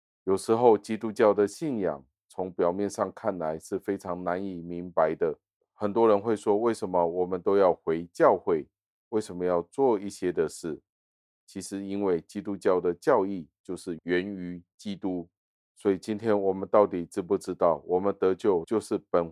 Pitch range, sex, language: 90-105 Hz, male, Chinese